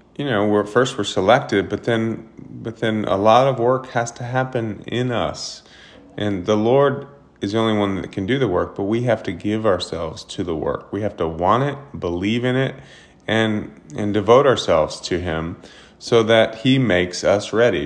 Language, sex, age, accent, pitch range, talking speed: English, male, 30-49, American, 95-120 Hz, 200 wpm